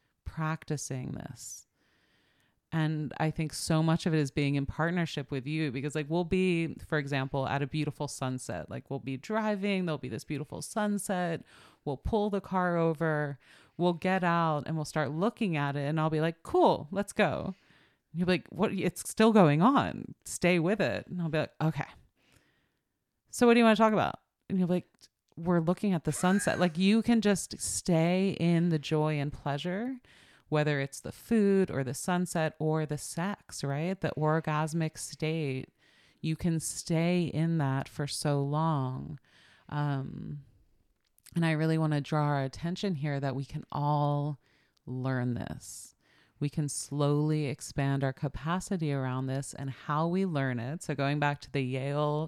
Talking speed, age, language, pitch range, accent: 175 wpm, 30-49, English, 140-175 Hz, American